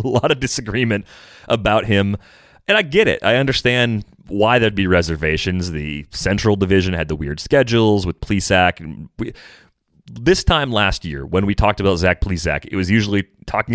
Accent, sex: American, male